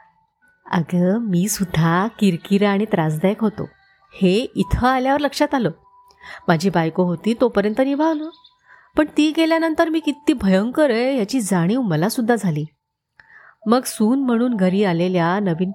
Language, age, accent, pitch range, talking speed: Marathi, 30-49, native, 175-250 Hz, 130 wpm